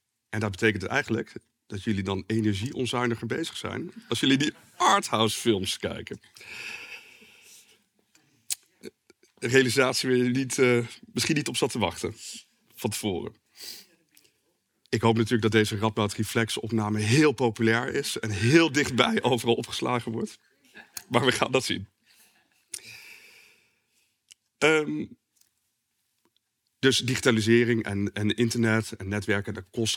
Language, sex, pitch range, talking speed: Dutch, male, 105-120 Hz, 120 wpm